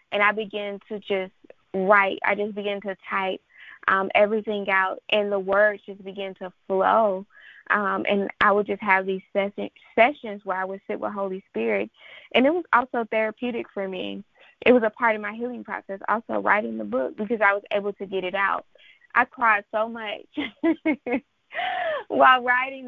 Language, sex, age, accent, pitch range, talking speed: English, female, 20-39, American, 195-225 Hz, 180 wpm